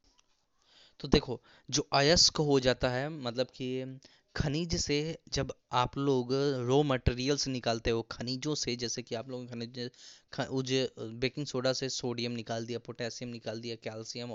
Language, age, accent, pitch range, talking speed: Hindi, 10-29, native, 115-130 Hz, 150 wpm